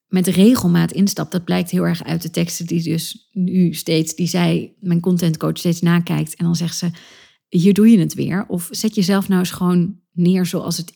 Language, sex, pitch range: Dutch, female, 175-200 Hz